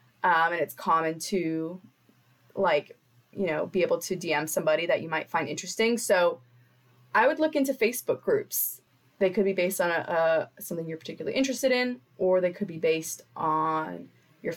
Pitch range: 170-220 Hz